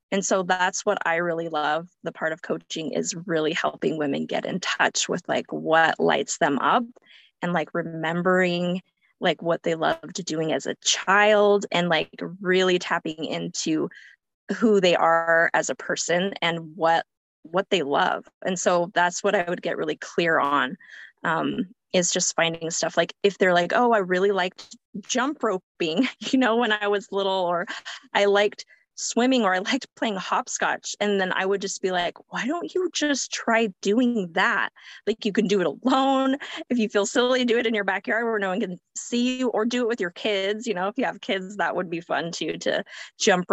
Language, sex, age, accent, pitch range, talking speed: English, female, 20-39, American, 175-225 Hz, 200 wpm